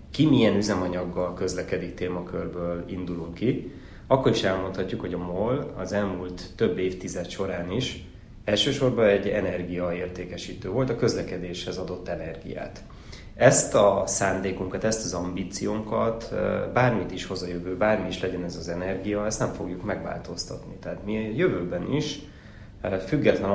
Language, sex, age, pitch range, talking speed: Hungarian, male, 30-49, 90-100 Hz, 140 wpm